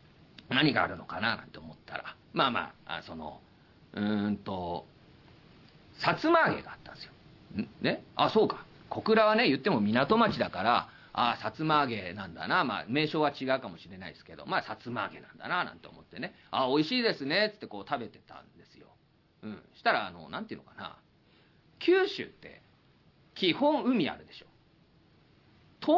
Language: Japanese